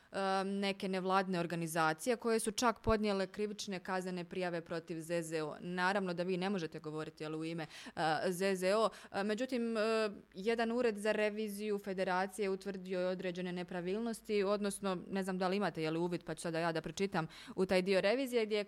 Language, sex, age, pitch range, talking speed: Croatian, female, 20-39, 170-210 Hz, 175 wpm